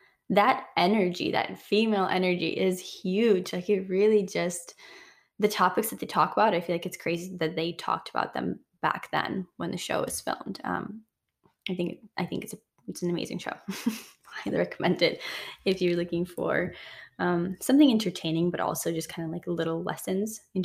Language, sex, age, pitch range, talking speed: English, female, 10-29, 170-200 Hz, 190 wpm